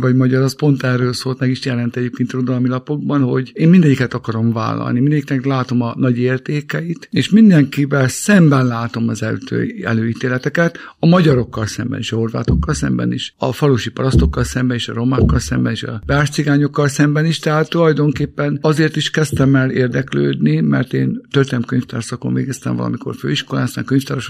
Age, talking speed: 50-69, 165 wpm